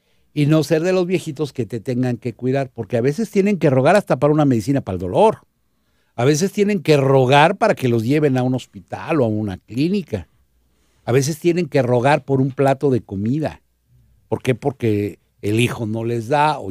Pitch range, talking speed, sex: 100-145 Hz, 210 wpm, male